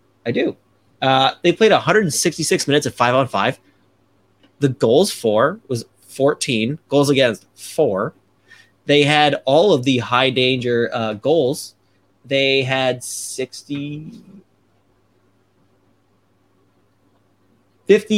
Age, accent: 30-49, American